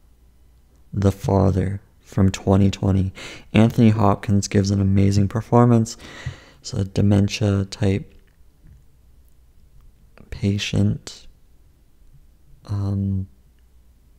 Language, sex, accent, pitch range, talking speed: English, male, American, 95-115 Hz, 70 wpm